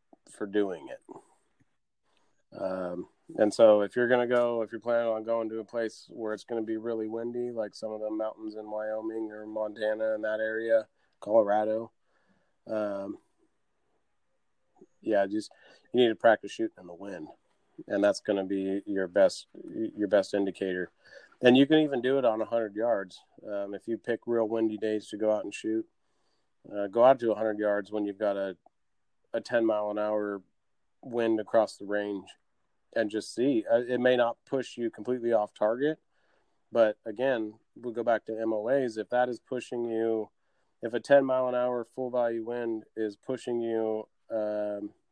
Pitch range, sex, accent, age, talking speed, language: 105-120 Hz, male, American, 30-49, 180 wpm, English